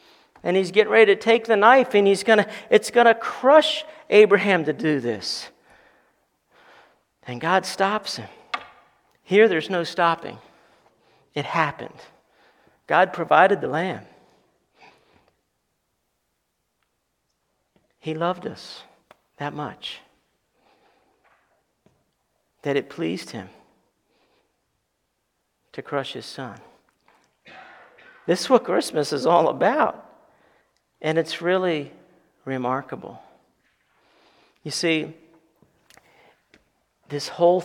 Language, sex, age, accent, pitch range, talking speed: English, male, 50-69, American, 145-195 Hz, 95 wpm